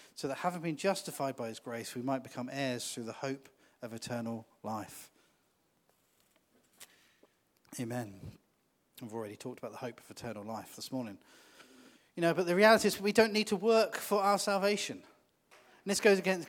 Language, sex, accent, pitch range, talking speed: English, male, British, 130-185 Hz, 175 wpm